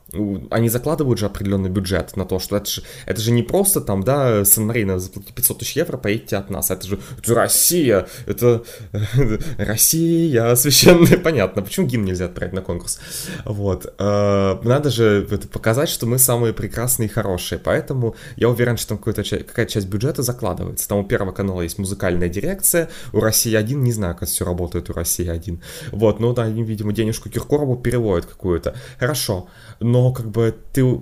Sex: male